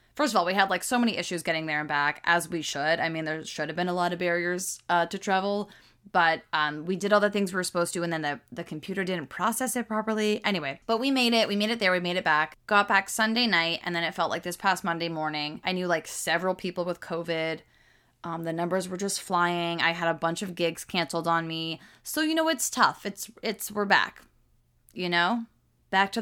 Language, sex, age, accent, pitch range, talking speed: English, female, 20-39, American, 165-205 Hz, 250 wpm